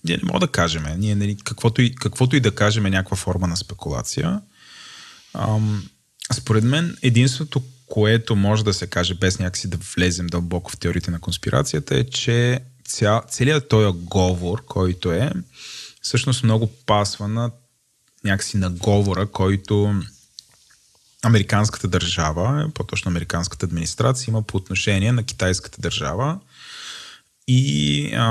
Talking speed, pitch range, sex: 135 wpm, 95-120 Hz, male